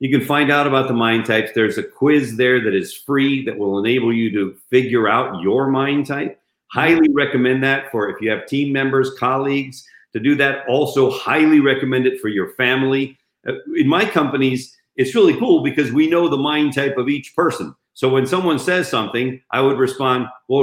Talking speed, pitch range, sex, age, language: 200 wpm, 130-175 Hz, male, 50-69, English